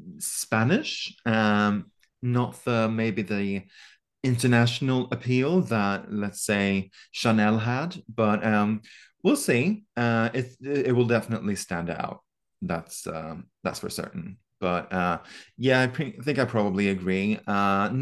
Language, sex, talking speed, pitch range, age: English, male, 125 wpm, 95-125 Hz, 30-49